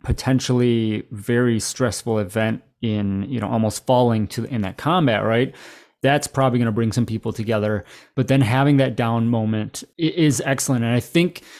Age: 20-39